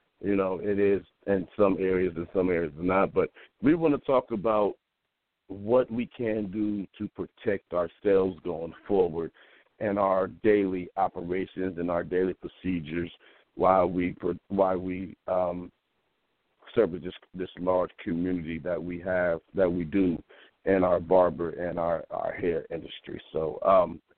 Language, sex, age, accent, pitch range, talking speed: English, male, 50-69, American, 90-110 Hz, 150 wpm